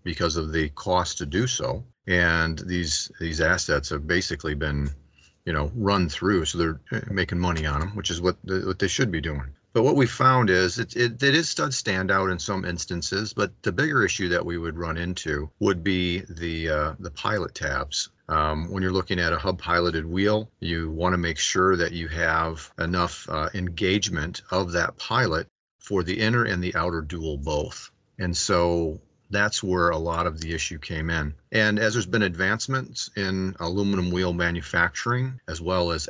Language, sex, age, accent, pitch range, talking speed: English, male, 40-59, American, 80-100 Hz, 195 wpm